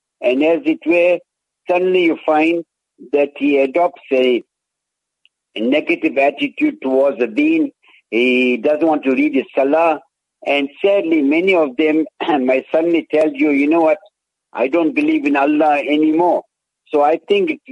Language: English